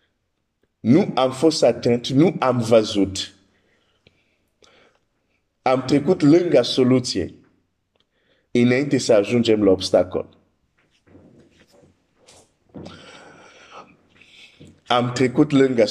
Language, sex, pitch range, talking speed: Romanian, male, 100-120 Hz, 70 wpm